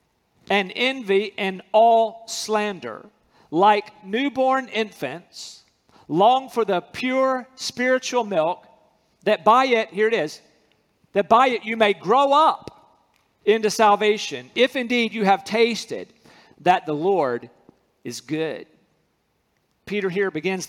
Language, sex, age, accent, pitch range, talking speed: English, male, 50-69, American, 190-230 Hz, 120 wpm